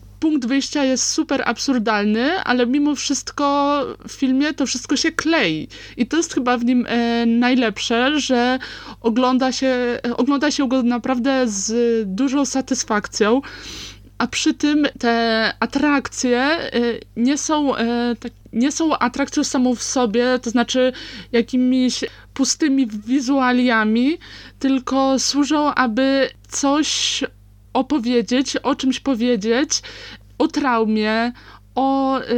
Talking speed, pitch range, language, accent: 105 wpm, 230-270 Hz, Polish, native